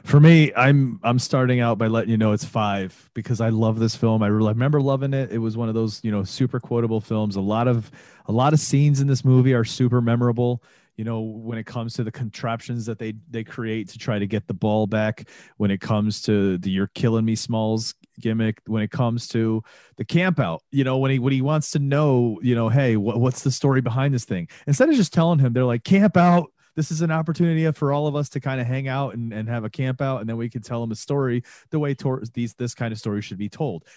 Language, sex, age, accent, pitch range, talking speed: English, male, 30-49, American, 110-135 Hz, 260 wpm